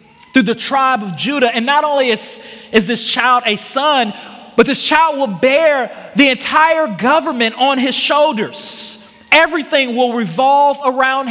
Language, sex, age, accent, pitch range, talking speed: English, male, 30-49, American, 200-245 Hz, 155 wpm